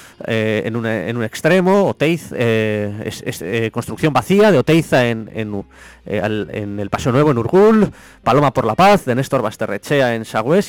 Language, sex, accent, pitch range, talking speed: English, male, Spanish, 105-140 Hz, 185 wpm